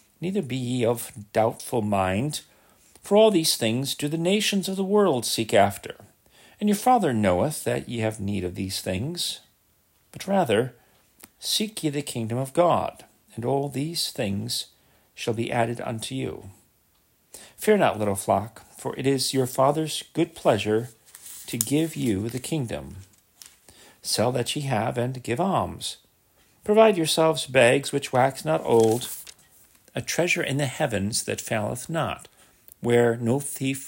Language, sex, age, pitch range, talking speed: English, male, 40-59, 110-150 Hz, 155 wpm